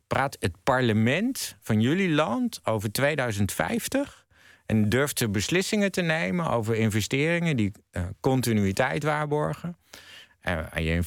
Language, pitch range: Dutch, 90-125 Hz